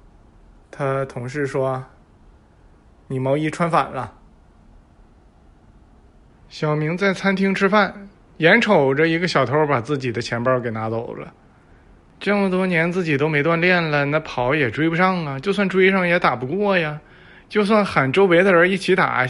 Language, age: Chinese, 20-39